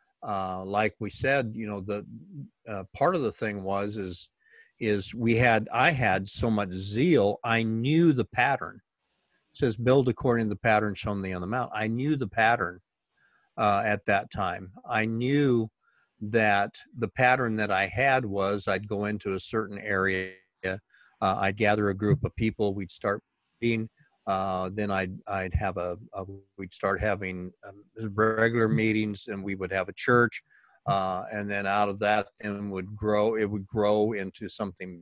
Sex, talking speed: male, 180 wpm